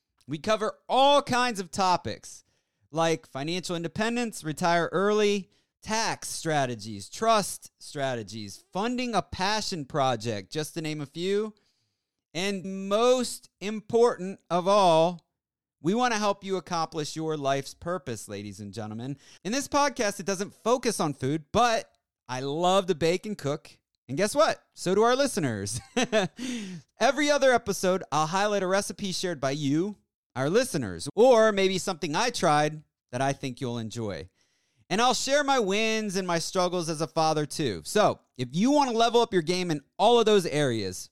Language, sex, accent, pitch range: English, male, American, 145-215 Hz